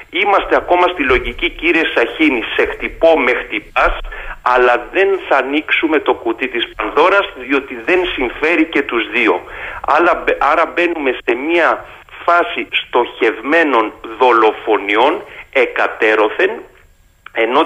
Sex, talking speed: male, 110 wpm